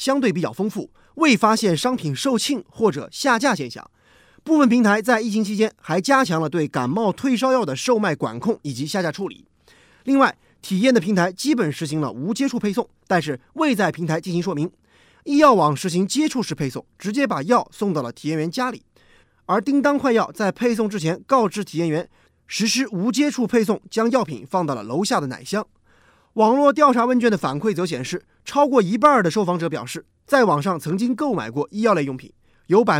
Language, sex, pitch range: Chinese, male, 165-245 Hz